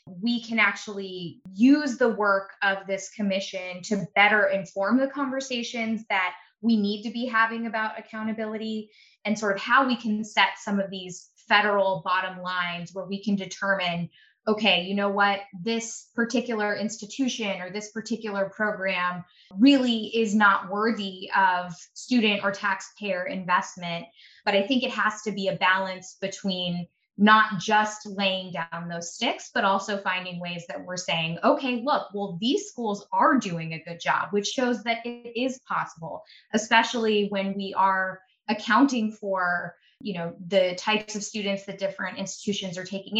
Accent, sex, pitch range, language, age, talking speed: American, female, 185-220 Hz, English, 20-39, 160 wpm